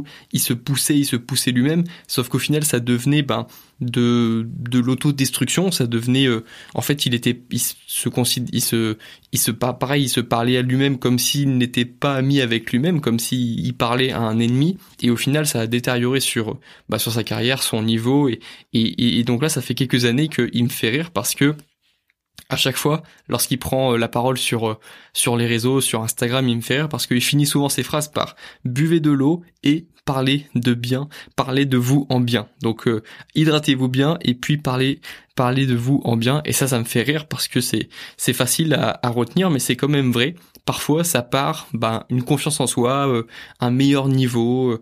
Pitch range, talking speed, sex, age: 120-140 Hz, 215 wpm, male, 20-39